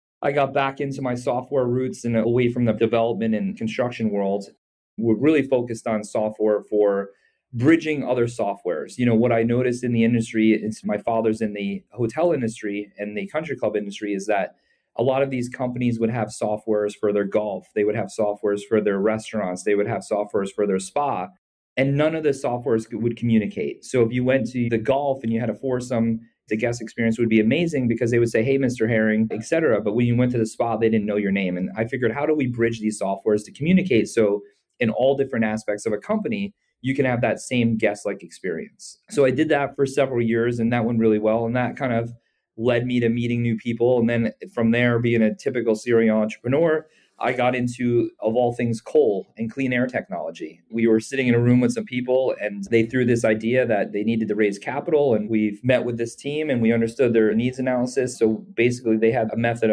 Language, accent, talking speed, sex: English, American, 225 wpm, male